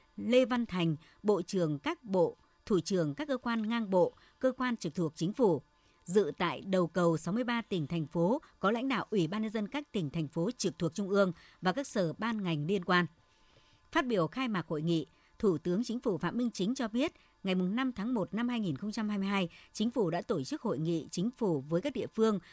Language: Vietnamese